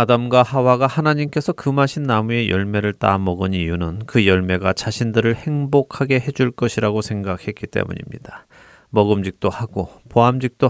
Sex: male